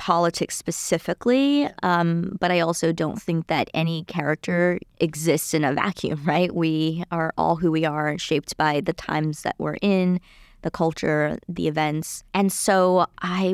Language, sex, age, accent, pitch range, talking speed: English, female, 20-39, American, 165-200 Hz, 160 wpm